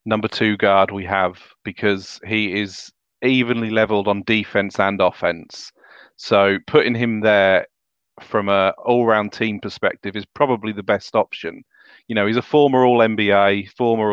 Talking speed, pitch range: 155 wpm, 100-115 Hz